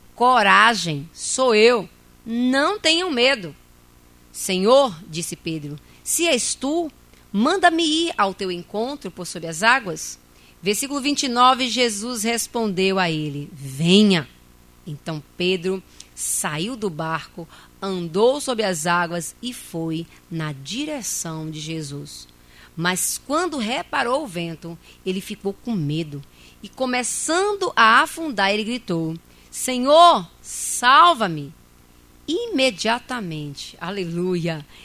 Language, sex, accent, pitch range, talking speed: Portuguese, female, Brazilian, 155-240 Hz, 105 wpm